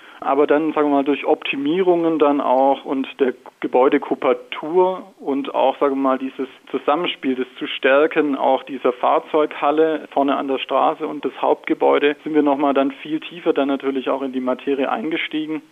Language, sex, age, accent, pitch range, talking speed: German, male, 40-59, German, 140-160 Hz, 170 wpm